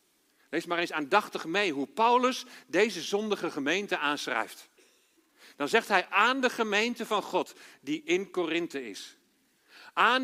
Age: 50-69